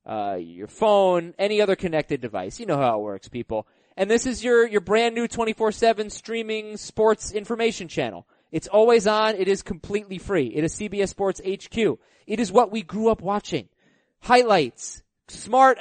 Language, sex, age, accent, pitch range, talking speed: English, male, 20-39, American, 130-200 Hz, 180 wpm